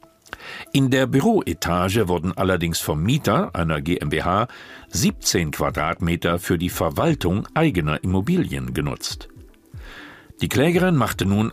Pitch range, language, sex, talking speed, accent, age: 85-110 Hz, German, male, 110 wpm, German, 50-69